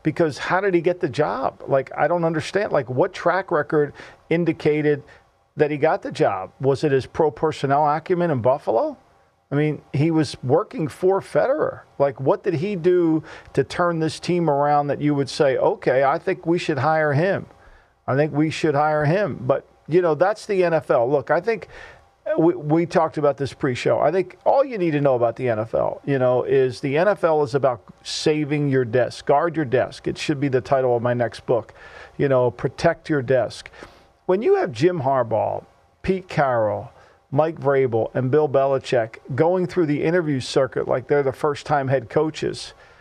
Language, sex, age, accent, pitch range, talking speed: English, male, 50-69, American, 135-175 Hz, 195 wpm